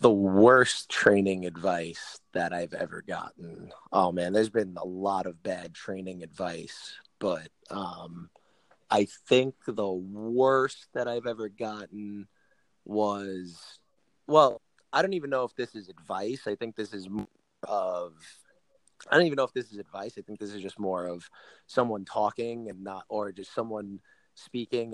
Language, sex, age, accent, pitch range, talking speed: English, male, 30-49, American, 100-120 Hz, 160 wpm